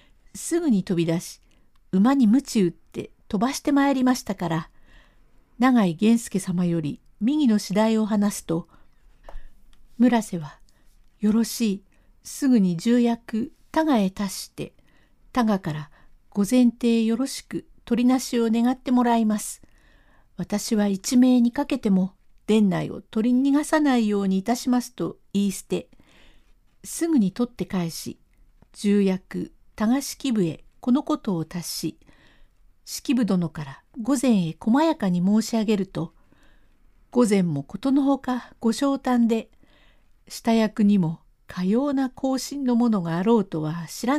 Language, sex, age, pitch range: Japanese, female, 50-69, 185-250 Hz